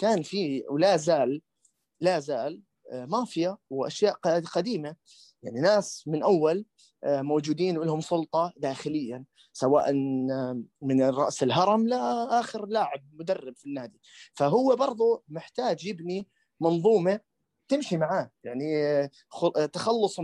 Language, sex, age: Arabic, male, 30-49